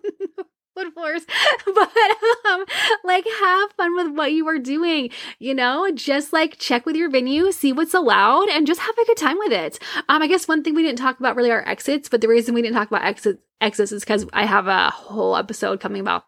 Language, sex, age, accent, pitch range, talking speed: English, female, 20-39, American, 210-320 Hz, 225 wpm